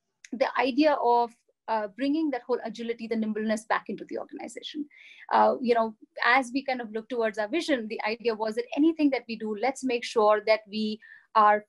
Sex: female